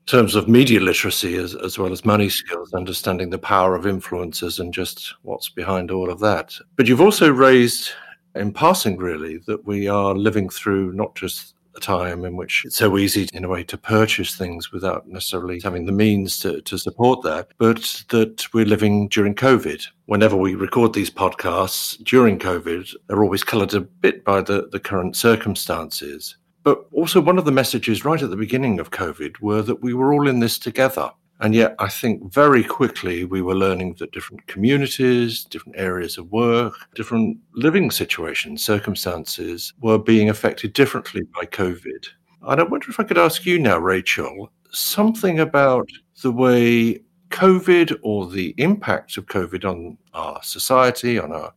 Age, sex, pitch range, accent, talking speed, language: 50-69, male, 95-125 Hz, British, 175 wpm, English